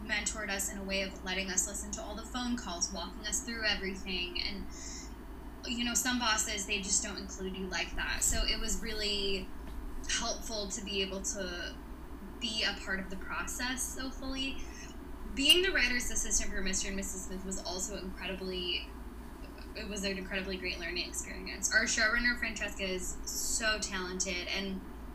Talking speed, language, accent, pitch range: 175 wpm, English, American, 195-240 Hz